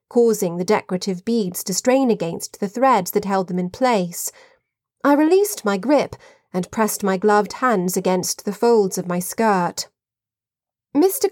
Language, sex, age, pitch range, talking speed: English, female, 30-49, 185-270 Hz, 160 wpm